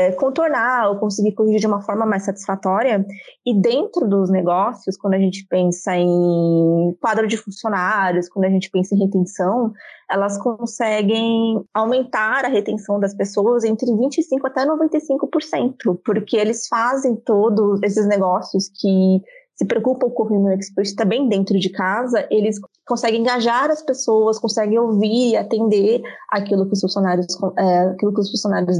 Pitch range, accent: 190-235 Hz, Brazilian